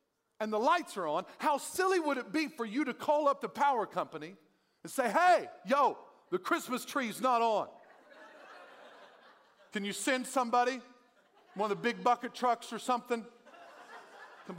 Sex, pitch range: male, 230-305 Hz